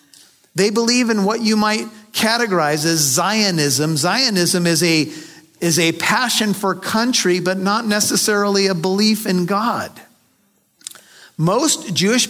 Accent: American